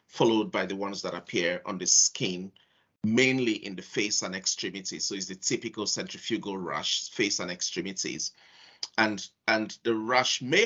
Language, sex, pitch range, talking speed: English, male, 95-115 Hz, 165 wpm